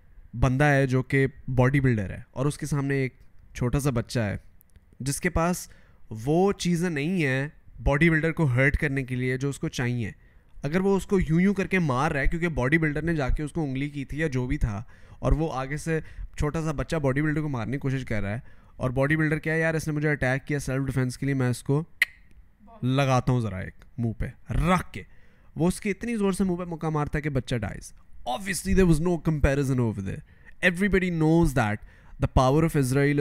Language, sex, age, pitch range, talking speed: Urdu, male, 20-39, 110-155 Hz, 215 wpm